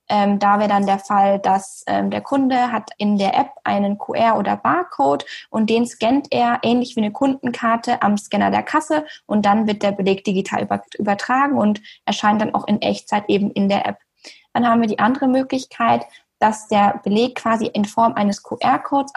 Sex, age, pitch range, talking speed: female, 10-29, 205-265 Hz, 190 wpm